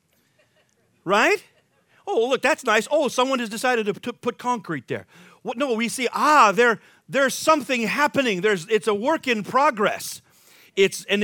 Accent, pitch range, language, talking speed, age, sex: American, 180-245 Hz, English, 165 wpm, 50-69, male